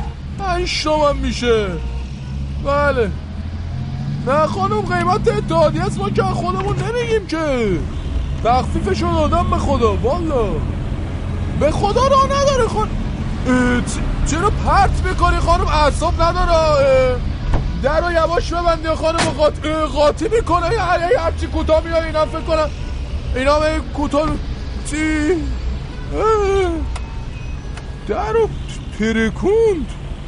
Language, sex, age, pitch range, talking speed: Persian, male, 20-39, 200-335 Hz, 115 wpm